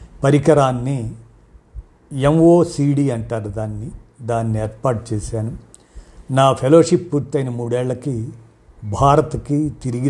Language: Telugu